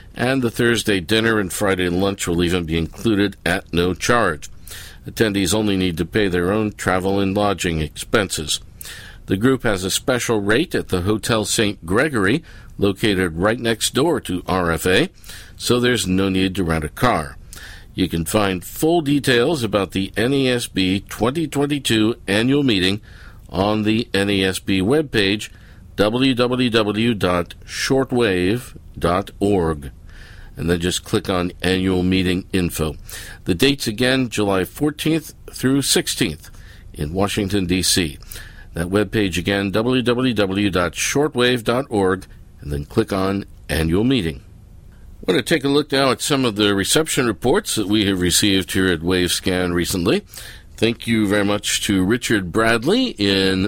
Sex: male